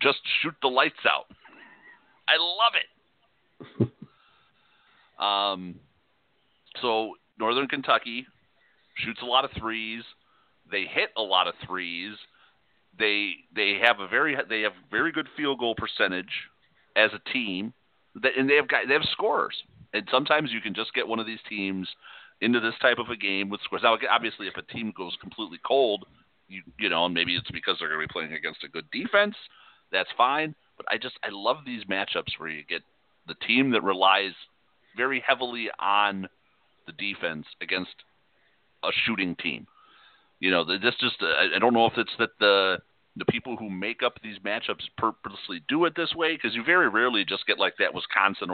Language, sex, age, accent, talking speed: English, male, 40-59, American, 180 wpm